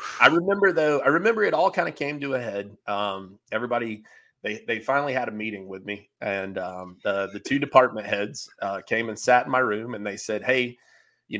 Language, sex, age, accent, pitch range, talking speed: English, male, 30-49, American, 105-125 Hz, 220 wpm